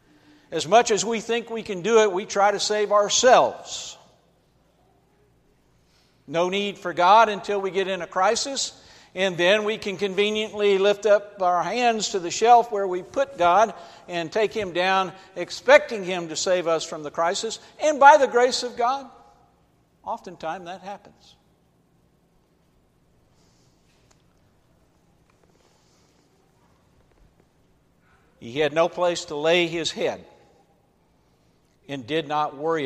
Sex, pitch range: male, 160-205 Hz